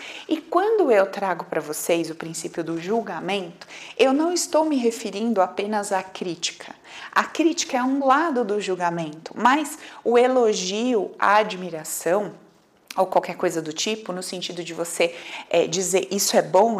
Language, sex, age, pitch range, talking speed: Portuguese, female, 30-49, 175-250 Hz, 155 wpm